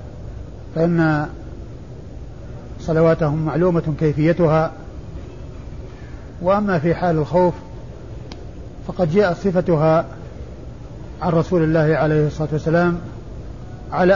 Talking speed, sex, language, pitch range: 75 wpm, male, Arabic, 155-180 Hz